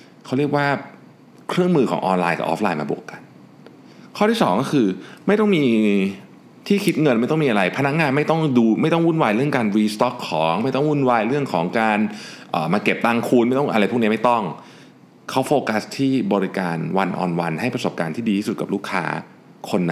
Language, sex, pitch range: Thai, male, 105-145 Hz